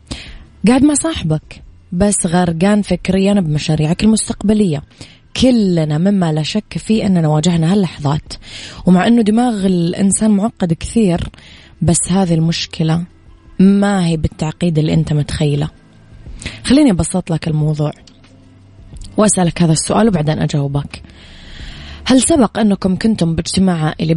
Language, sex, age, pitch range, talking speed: Arabic, female, 20-39, 155-195 Hz, 115 wpm